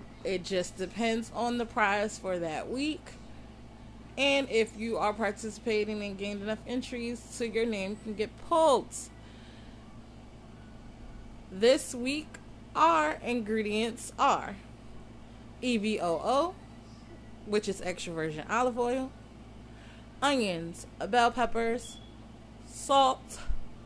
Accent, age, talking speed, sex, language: American, 30-49, 100 wpm, female, English